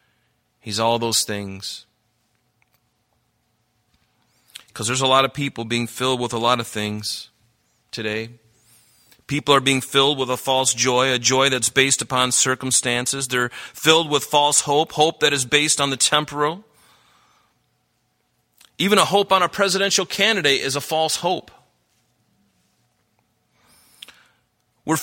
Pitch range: 115-140 Hz